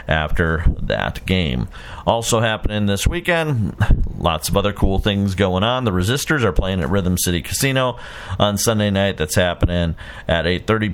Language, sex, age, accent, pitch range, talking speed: English, male, 40-59, American, 90-115 Hz, 160 wpm